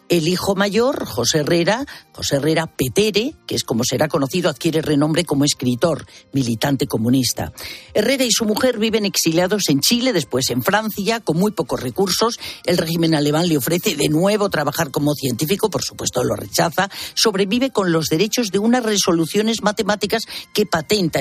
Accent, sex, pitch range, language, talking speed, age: Spanish, female, 145-210 Hz, Spanish, 165 wpm, 50-69